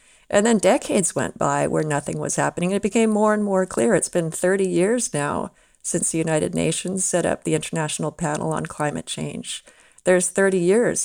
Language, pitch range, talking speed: English, 160-200 Hz, 190 wpm